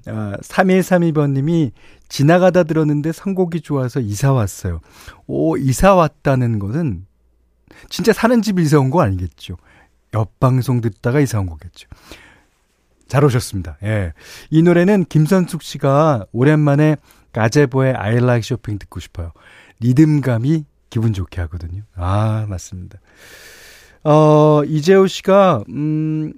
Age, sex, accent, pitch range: 40-59, male, native, 110-160 Hz